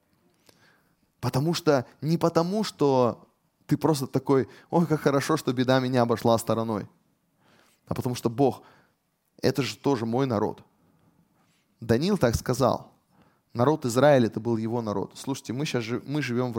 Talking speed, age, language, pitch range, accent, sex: 140 wpm, 20-39, Russian, 105-135 Hz, native, male